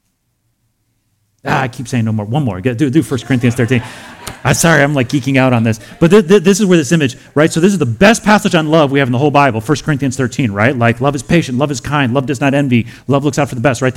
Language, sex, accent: English, male, American